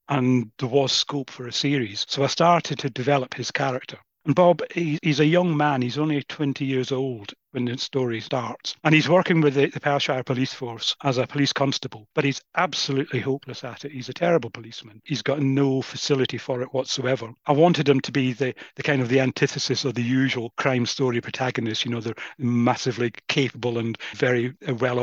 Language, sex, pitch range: English, male, 125-145 Hz